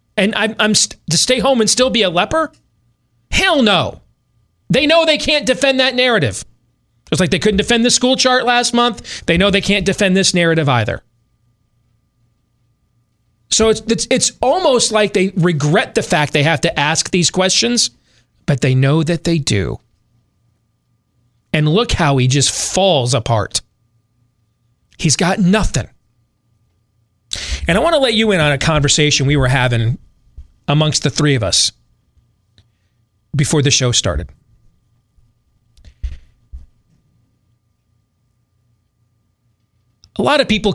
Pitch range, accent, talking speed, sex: 115-185 Hz, American, 145 wpm, male